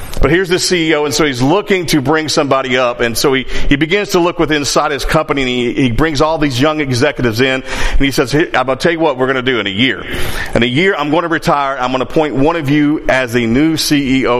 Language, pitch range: English, 130-160 Hz